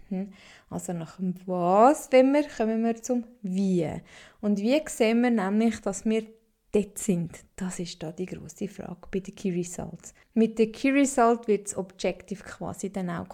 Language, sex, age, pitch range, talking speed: German, female, 20-39, 190-230 Hz, 175 wpm